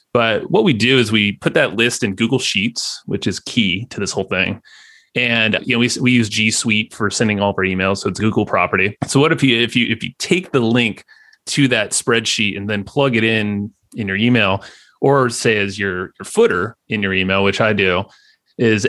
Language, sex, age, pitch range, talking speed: English, male, 30-49, 100-125 Hz, 230 wpm